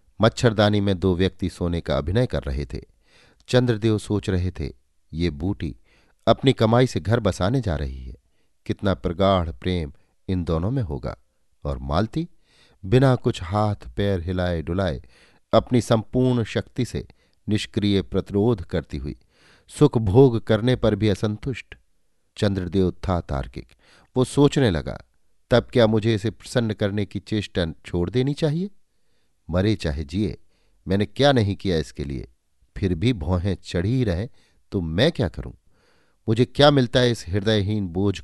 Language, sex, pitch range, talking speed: Hindi, male, 85-110 Hz, 150 wpm